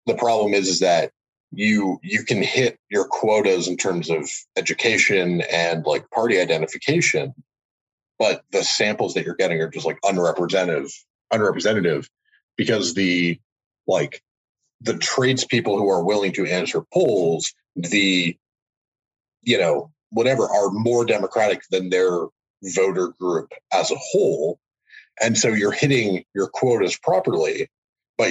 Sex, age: male, 30-49